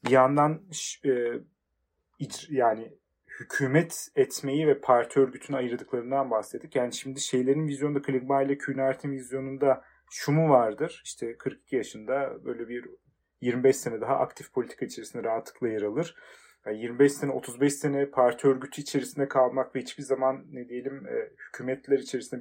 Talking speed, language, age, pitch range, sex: 135 wpm, Turkish, 40-59, 130-160 Hz, male